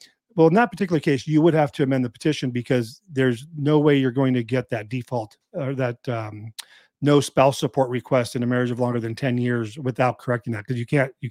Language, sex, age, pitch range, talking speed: English, male, 40-59, 125-160 Hz, 235 wpm